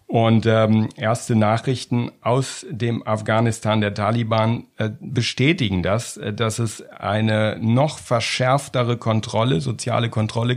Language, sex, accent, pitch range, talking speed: German, male, German, 110-130 Hz, 115 wpm